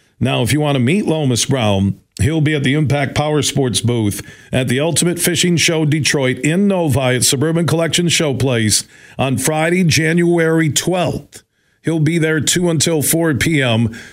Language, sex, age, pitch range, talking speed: English, male, 50-69, 120-155 Hz, 165 wpm